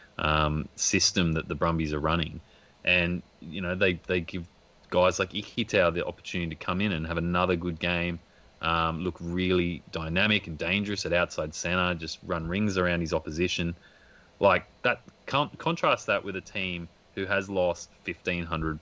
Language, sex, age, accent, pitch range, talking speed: English, male, 30-49, Australian, 85-95 Hz, 170 wpm